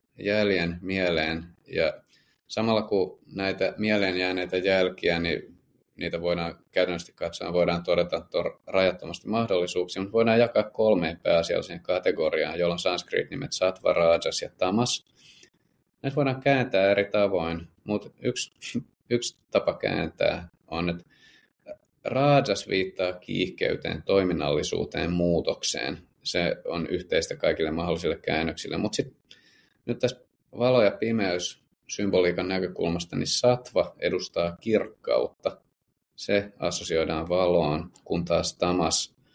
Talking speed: 110 wpm